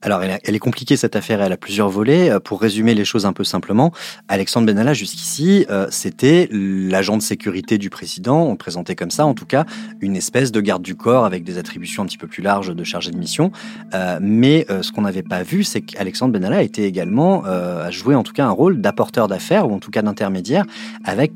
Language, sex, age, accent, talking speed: French, male, 30-49, French, 235 wpm